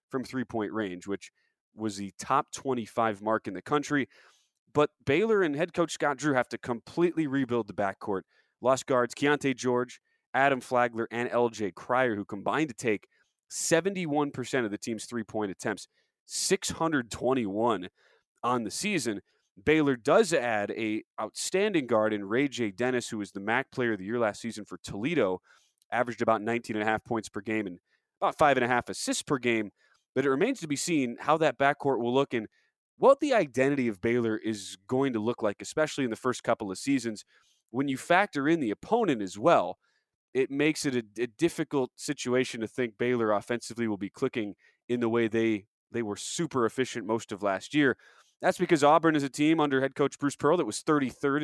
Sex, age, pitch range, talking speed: male, 20-39, 110-145 Hz, 185 wpm